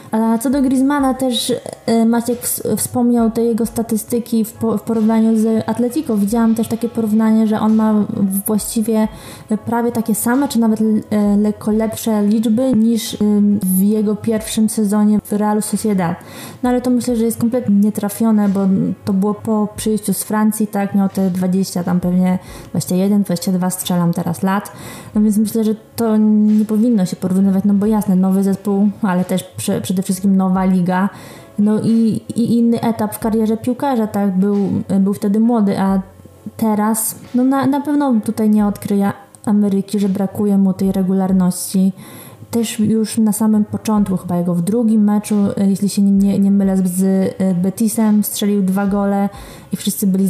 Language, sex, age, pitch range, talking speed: Polish, female, 20-39, 195-225 Hz, 165 wpm